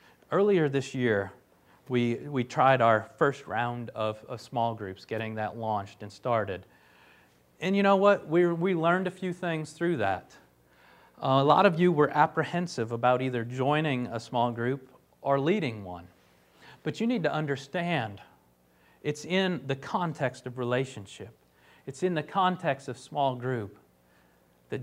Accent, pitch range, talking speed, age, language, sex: American, 105-150 Hz, 155 wpm, 40-59, English, male